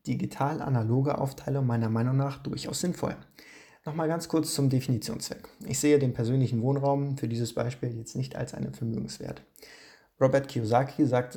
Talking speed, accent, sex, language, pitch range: 150 wpm, German, male, English, 120-150 Hz